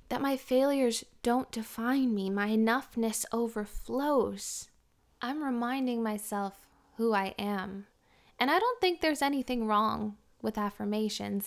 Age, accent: 10-29, American